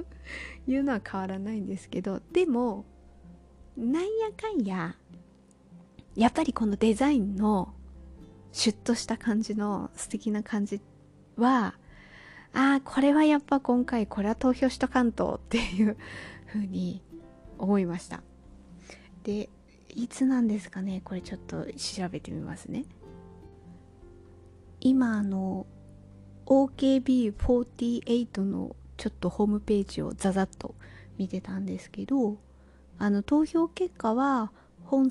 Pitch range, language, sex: 180-250 Hz, Japanese, female